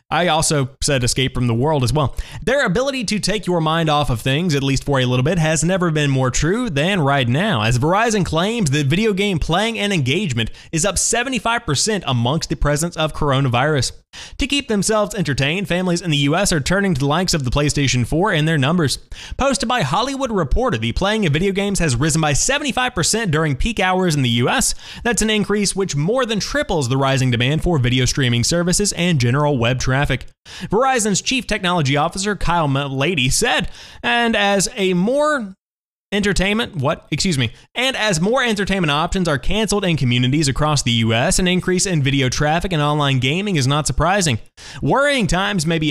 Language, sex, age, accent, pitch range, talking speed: English, male, 20-39, American, 145-205 Hz, 195 wpm